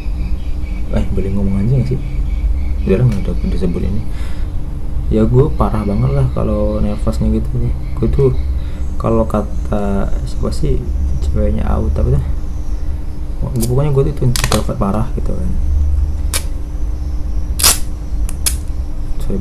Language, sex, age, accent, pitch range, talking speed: Indonesian, male, 20-39, native, 70-105 Hz, 110 wpm